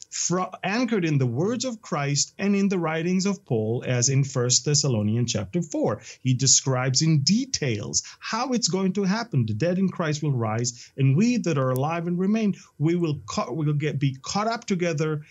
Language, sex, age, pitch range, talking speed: English, male, 30-49, 125-175 Hz, 190 wpm